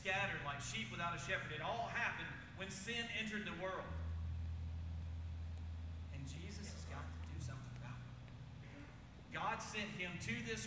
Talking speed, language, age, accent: 155 wpm, English, 40-59, American